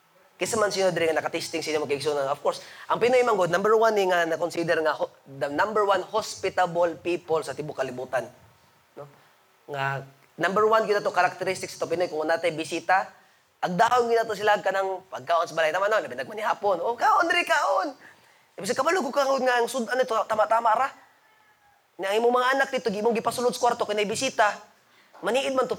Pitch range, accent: 180-275 Hz, native